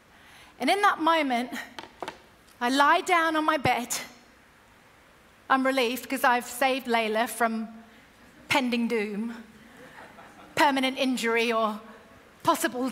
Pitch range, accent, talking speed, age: 285-425 Hz, British, 105 wpm, 40-59